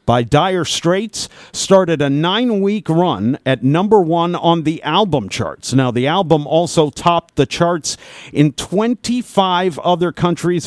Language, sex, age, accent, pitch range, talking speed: English, male, 50-69, American, 130-180 Hz, 140 wpm